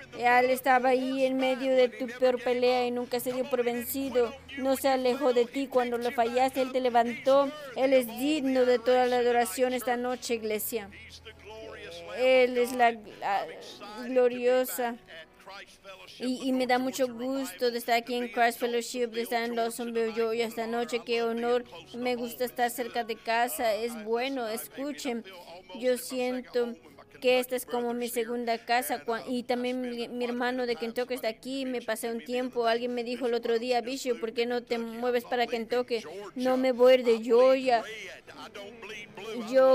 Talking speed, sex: 170 wpm, female